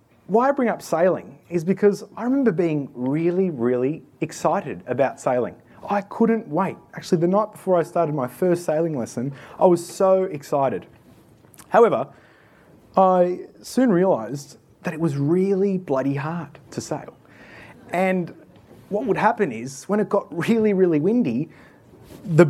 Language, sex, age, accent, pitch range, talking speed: English, male, 20-39, Australian, 155-205 Hz, 150 wpm